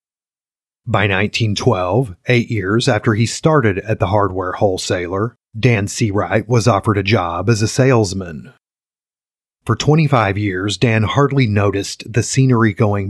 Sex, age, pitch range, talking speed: male, 30-49, 100-120 Hz, 135 wpm